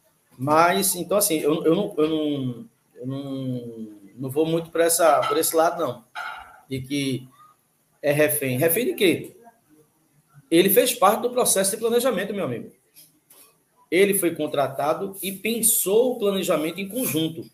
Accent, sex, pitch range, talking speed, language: Brazilian, male, 150-230 Hz, 130 wpm, Portuguese